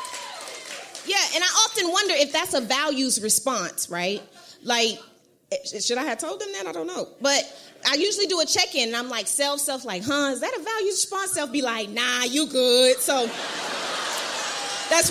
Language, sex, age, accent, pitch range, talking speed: English, female, 20-39, American, 245-360 Hz, 185 wpm